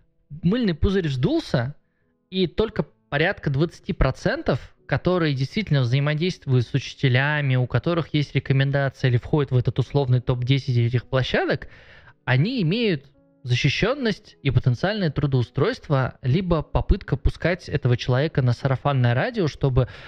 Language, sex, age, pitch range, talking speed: Russian, male, 20-39, 120-145 Hz, 115 wpm